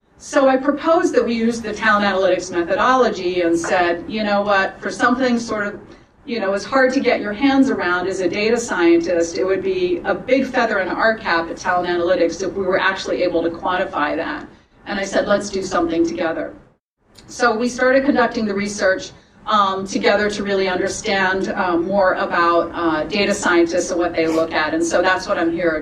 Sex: female